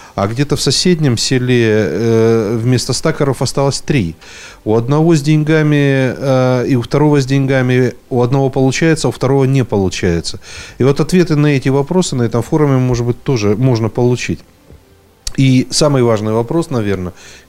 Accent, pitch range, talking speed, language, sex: native, 110-145 Hz, 160 wpm, Russian, male